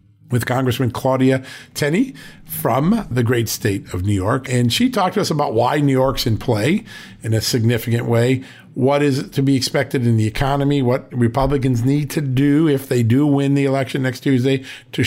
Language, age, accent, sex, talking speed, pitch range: English, 50-69, American, male, 195 wpm, 125-155 Hz